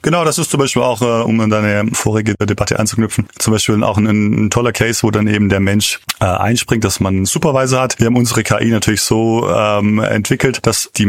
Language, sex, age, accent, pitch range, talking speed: German, male, 30-49, German, 105-125 Hz, 220 wpm